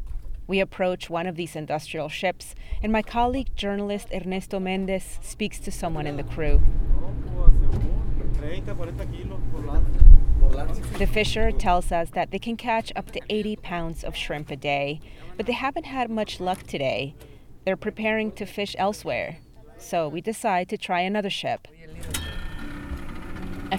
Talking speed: 140 wpm